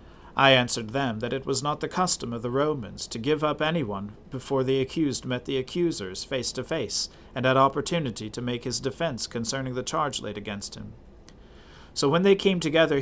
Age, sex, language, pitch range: 40-59, male, English, 115-155 Hz